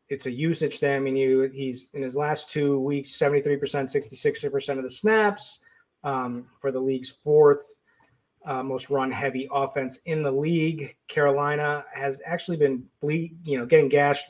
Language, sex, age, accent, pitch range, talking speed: English, male, 30-49, American, 135-190 Hz, 170 wpm